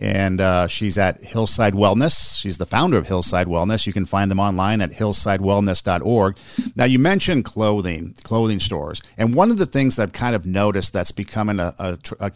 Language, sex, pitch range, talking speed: English, male, 95-115 Hz, 185 wpm